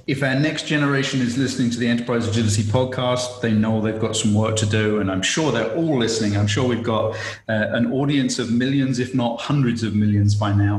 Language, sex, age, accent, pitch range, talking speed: English, male, 30-49, British, 105-125 Hz, 230 wpm